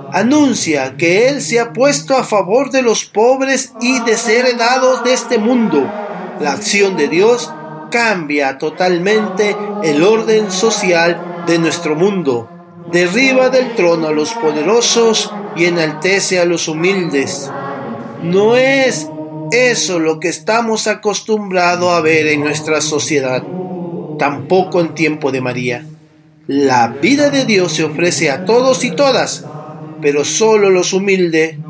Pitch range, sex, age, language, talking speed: 155-210 Hz, male, 40-59, Spanish, 135 wpm